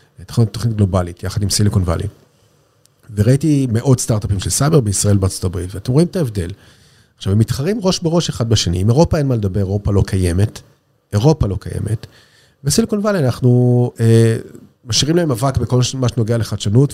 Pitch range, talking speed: 100-125 Hz, 165 wpm